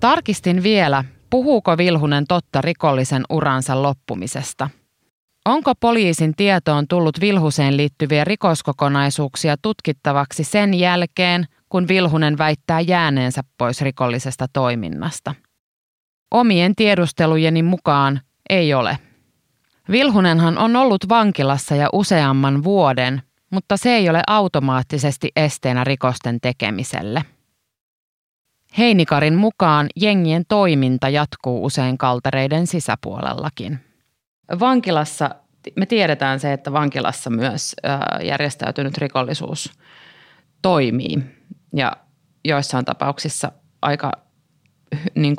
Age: 20-39